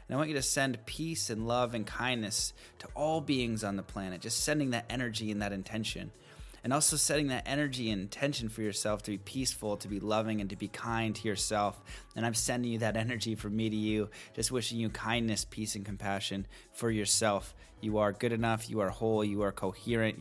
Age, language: 30-49, English